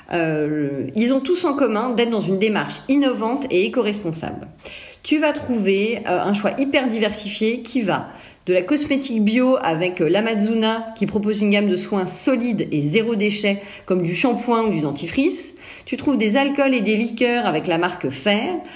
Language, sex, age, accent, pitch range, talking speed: French, female, 40-59, French, 165-235 Hz, 175 wpm